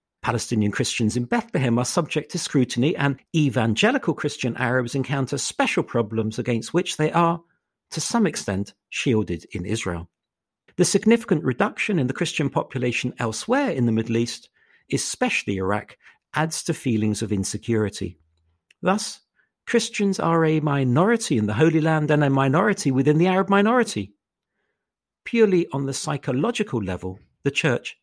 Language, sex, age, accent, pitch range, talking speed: English, male, 50-69, British, 115-180 Hz, 145 wpm